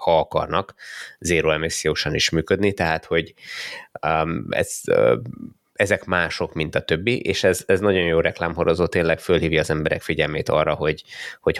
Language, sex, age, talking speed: Hungarian, male, 20-39, 140 wpm